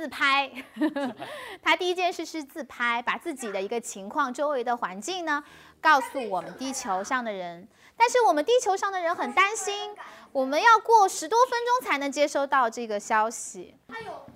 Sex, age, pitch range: female, 20-39, 230-345 Hz